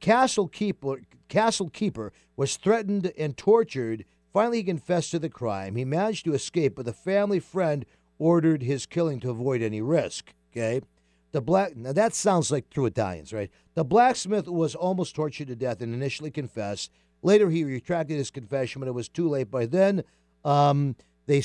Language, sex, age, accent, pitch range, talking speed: English, male, 50-69, American, 115-170 Hz, 175 wpm